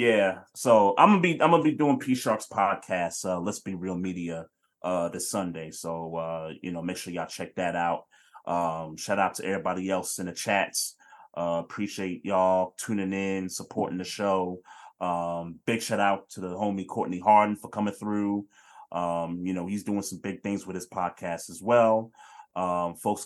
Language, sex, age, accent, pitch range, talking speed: English, male, 30-49, American, 95-110 Hz, 190 wpm